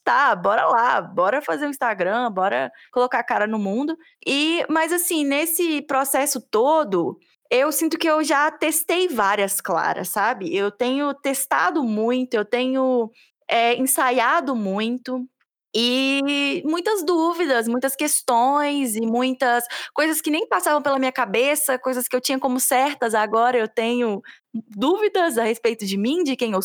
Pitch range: 230-300 Hz